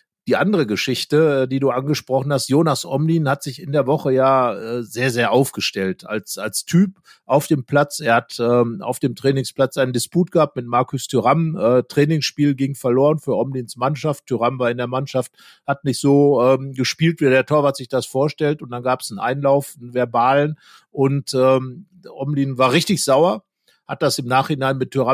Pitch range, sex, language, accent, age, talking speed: 130-150 Hz, male, German, German, 50-69, 190 wpm